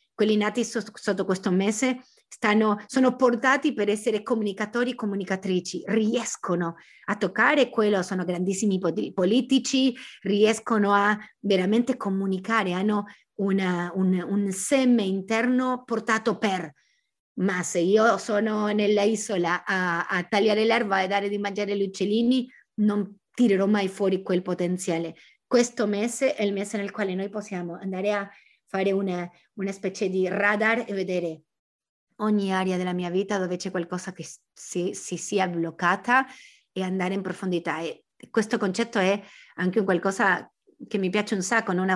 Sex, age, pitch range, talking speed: female, 30-49, 190-225 Hz, 140 wpm